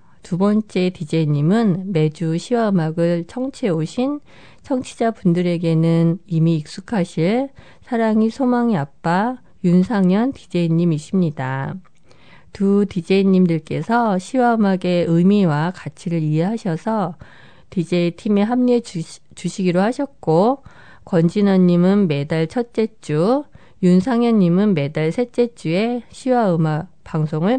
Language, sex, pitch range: Korean, female, 165-215 Hz